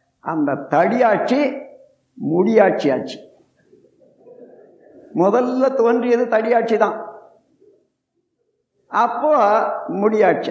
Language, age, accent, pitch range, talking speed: Tamil, 60-79, native, 210-285 Hz, 55 wpm